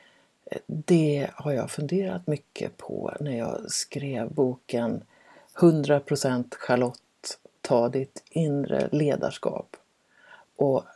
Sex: female